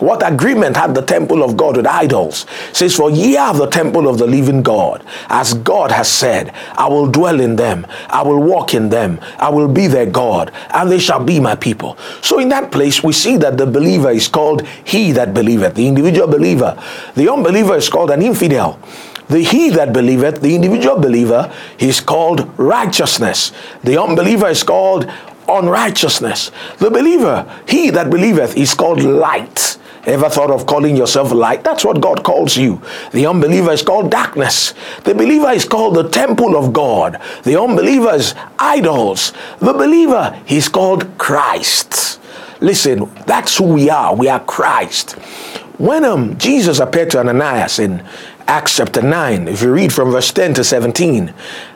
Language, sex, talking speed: English, male, 175 wpm